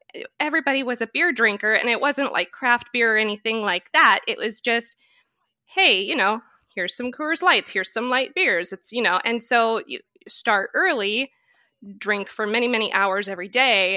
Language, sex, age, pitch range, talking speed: English, female, 20-39, 195-245 Hz, 190 wpm